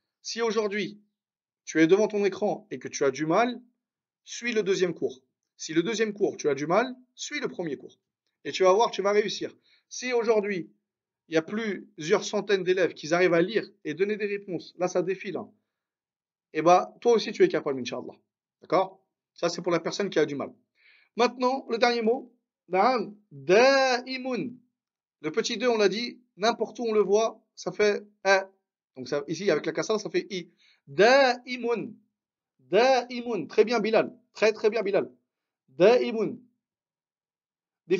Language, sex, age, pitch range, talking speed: French, male, 40-59, 180-235 Hz, 180 wpm